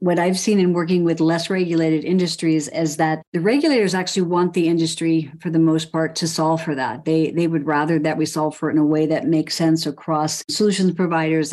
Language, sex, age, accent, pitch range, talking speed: English, female, 50-69, American, 160-180 Hz, 225 wpm